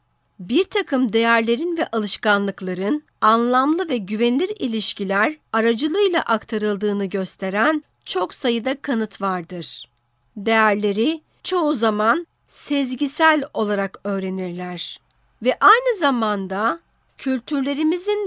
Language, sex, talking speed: Turkish, female, 85 wpm